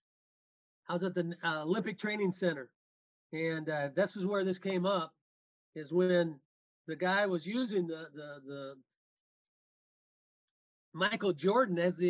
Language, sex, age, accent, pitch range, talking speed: English, male, 40-59, American, 175-235 Hz, 145 wpm